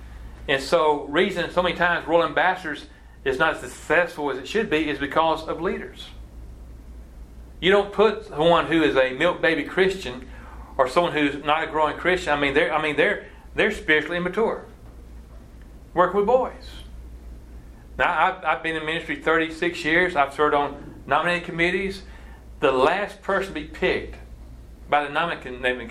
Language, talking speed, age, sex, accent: English, 165 wpm, 40-59, male, American